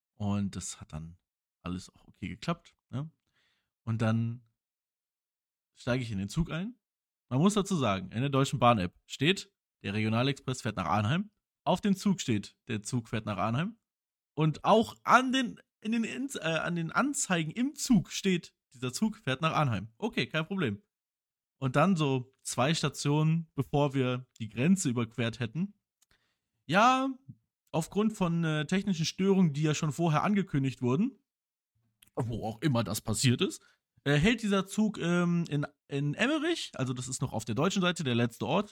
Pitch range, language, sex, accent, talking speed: 115-185 Hz, German, male, German, 170 wpm